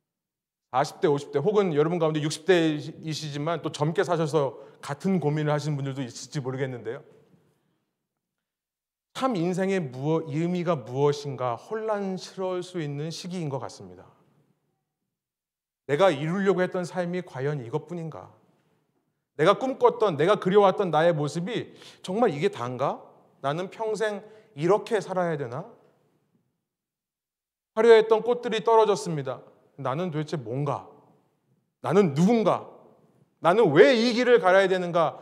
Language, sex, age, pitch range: Korean, male, 30-49, 150-210 Hz